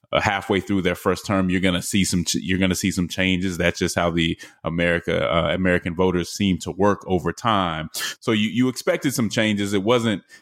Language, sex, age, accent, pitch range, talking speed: English, male, 20-39, American, 90-100 Hz, 215 wpm